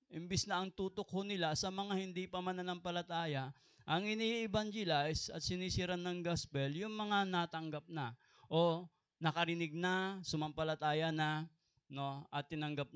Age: 20-39